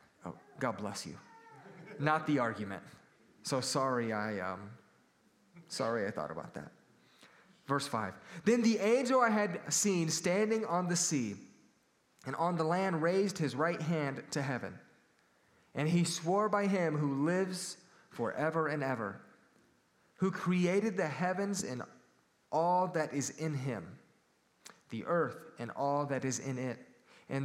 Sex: male